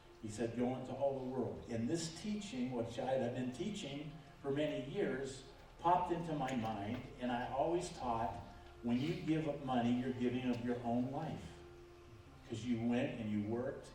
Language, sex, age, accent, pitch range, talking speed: English, male, 50-69, American, 115-150 Hz, 185 wpm